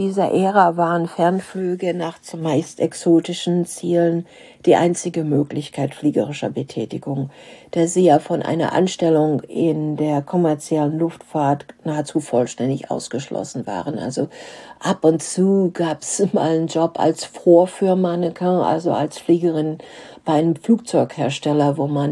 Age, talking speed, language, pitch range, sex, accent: 50-69, 130 wpm, German, 150-180 Hz, female, German